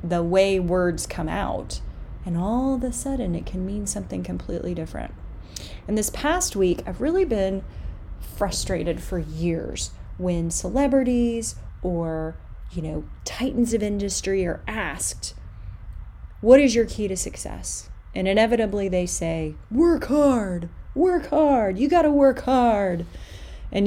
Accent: American